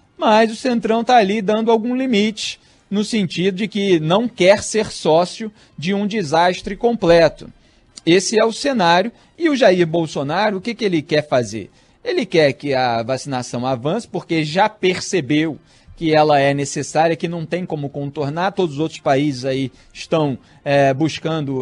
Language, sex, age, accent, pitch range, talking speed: Portuguese, male, 40-59, Brazilian, 140-200 Hz, 165 wpm